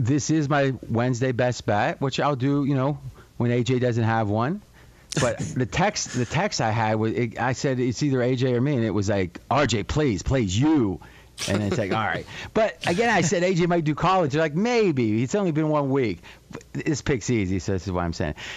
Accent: American